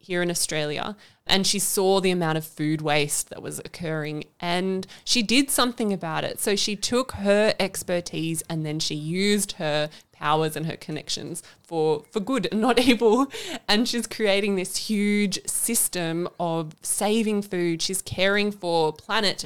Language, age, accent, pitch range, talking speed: English, 20-39, Australian, 155-205 Hz, 165 wpm